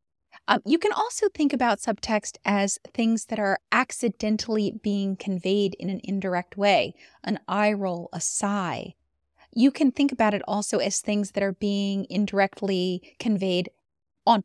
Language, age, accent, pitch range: English, 30-49, American, 190-230 Hz